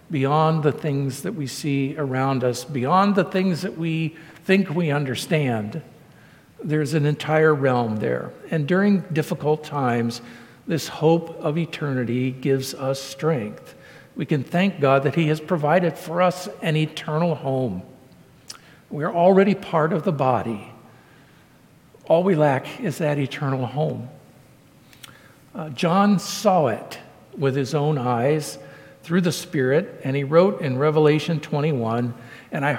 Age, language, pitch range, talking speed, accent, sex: 50-69, English, 135-170 Hz, 140 wpm, American, male